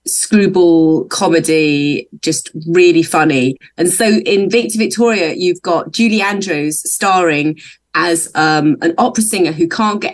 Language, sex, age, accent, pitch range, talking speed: English, female, 30-49, British, 165-225 Hz, 135 wpm